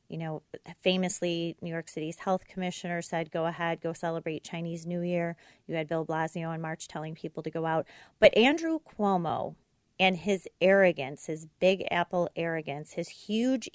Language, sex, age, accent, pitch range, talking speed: English, female, 30-49, American, 165-190 Hz, 170 wpm